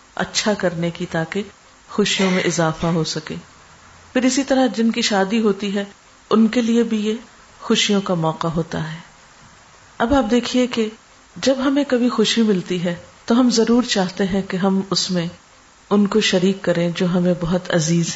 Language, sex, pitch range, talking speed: Urdu, female, 175-220 Hz, 180 wpm